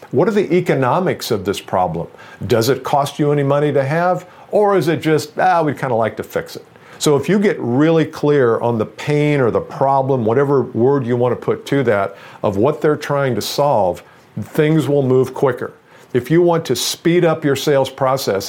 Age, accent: 50-69, American